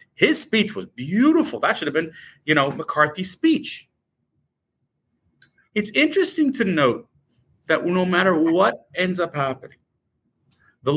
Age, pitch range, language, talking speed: 40-59, 150-235 Hz, English, 130 wpm